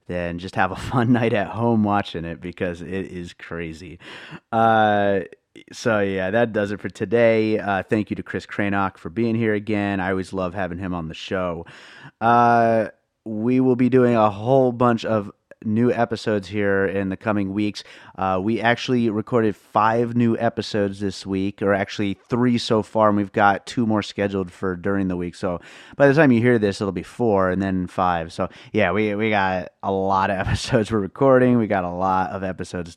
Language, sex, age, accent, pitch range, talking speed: English, male, 30-49, American, 95-120 Hz, 200 wpm